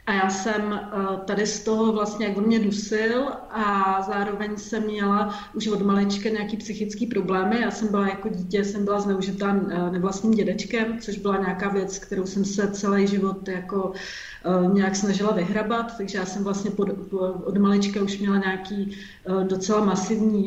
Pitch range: 200-220 Hz